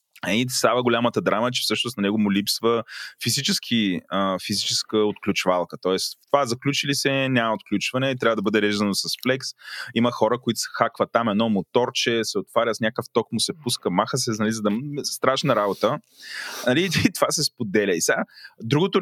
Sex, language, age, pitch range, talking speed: male, Bulgarian, 20-39, 100-130 Hz, 190 wpm